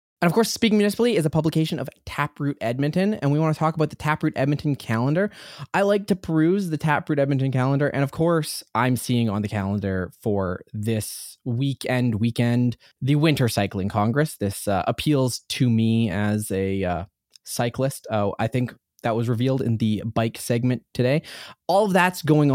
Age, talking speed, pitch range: 20-39, 180 wpm, 115-160 Hz